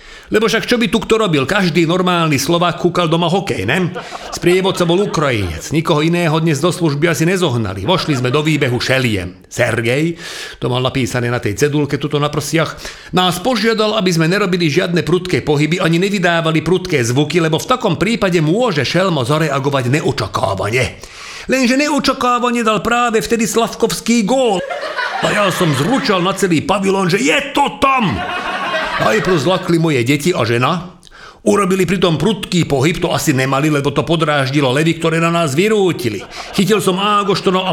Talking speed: 165 wpm